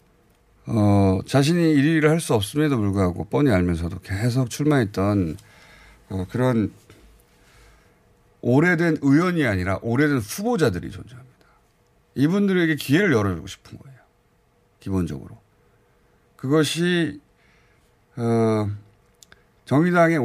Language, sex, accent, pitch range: Korean, male, native, 100-145 Hz